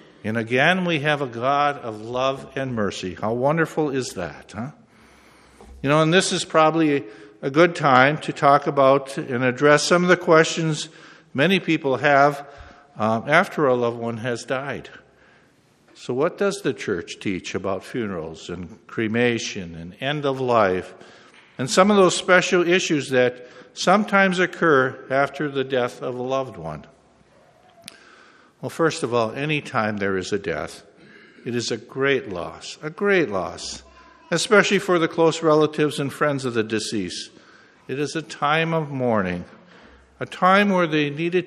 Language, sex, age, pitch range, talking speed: English, male, 60-79, 120-165 Hz, 160 wpm